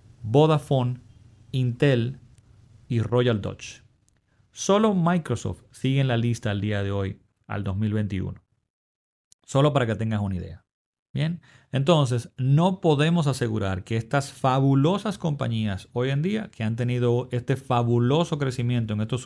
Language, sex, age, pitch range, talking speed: Spanish, male, 40-59, 110-145 Hz, 135 wpm